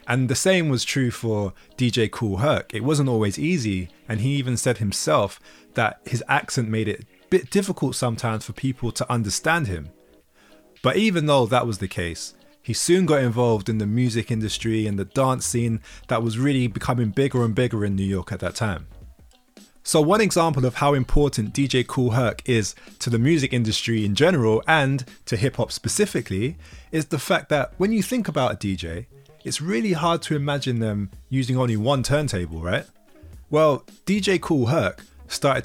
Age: 20-39